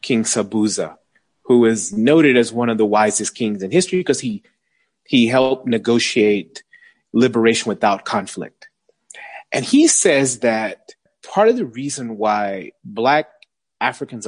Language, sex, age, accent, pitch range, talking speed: English, male, 30-49, American, 125-185 Hz, 135 wpm